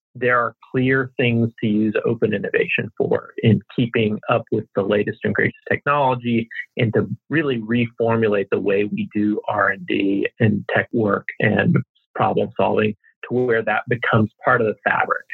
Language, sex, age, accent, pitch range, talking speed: English, male, 40-59, American, 115-130 Hz, 160 wpm